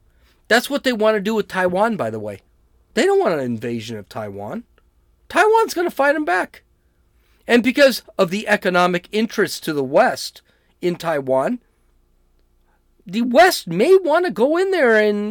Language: English